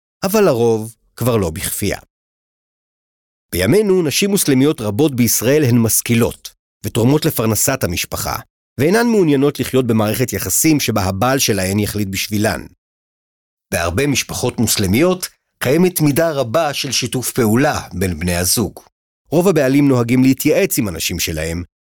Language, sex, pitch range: Hebrew, male, 100-145 Hz